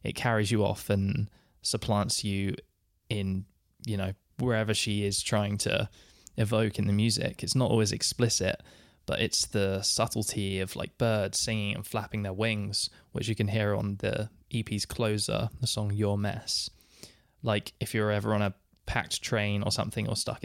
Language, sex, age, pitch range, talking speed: English, male, 20-39, 100-115 Hz, 175 wpm